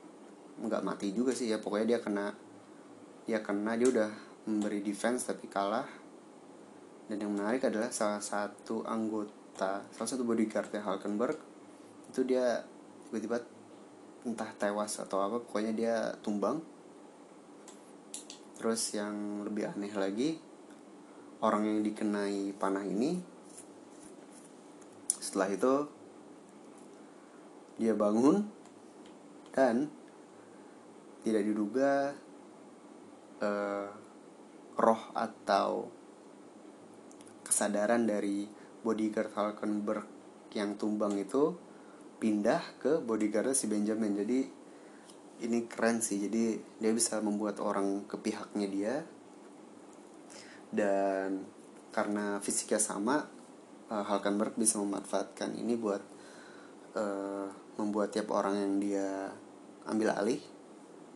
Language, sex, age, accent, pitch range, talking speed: Indonesian, male, 30-49, native, 100-115 Hz, 100 wpm